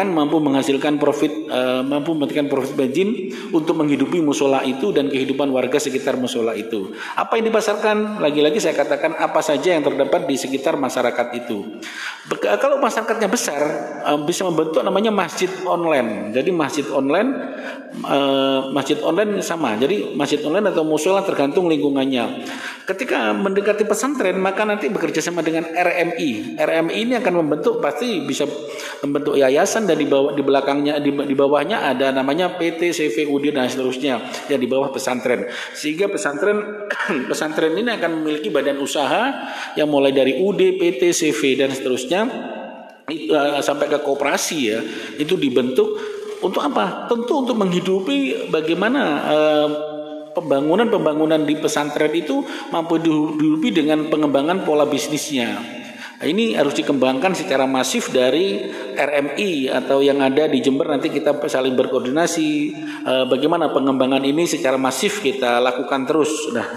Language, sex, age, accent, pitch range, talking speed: Indonesian, male, 50-69, native, 140-180 Hz, 135 wpm